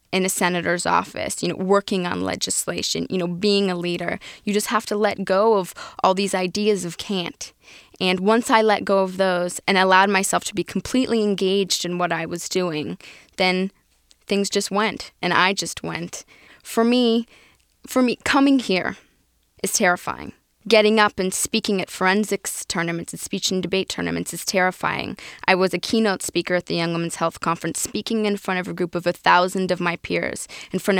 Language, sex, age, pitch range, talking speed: English, female, 10-29, 175-205 Hz, 195 wpm